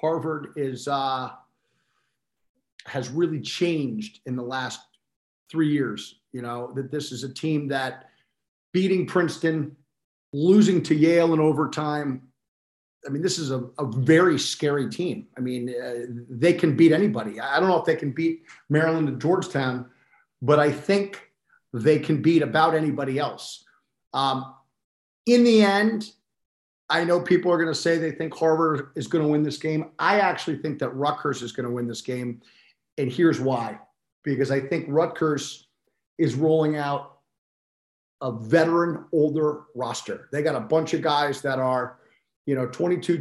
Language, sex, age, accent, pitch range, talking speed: English, male, 50-69, American, 135-165 Hz, 160 wpm